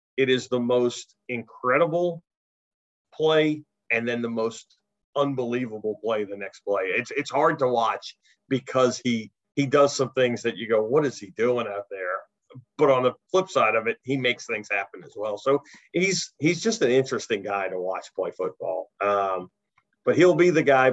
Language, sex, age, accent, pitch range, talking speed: English, male, 40-59, American, 105-135 Hz, 185 wpm